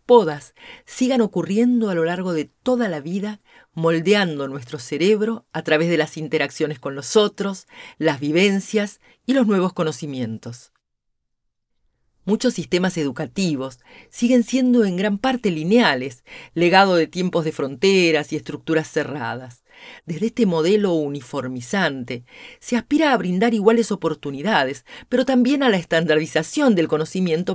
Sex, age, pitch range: female, 40-59, 150-215 Hz